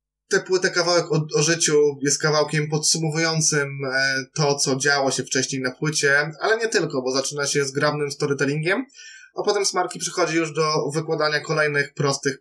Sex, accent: male, native